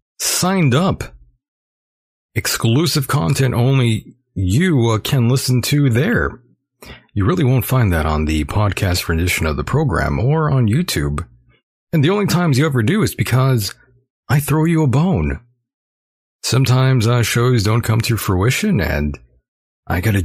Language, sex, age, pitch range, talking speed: English, male, 40-59, 95-135 Hz, 150 wpm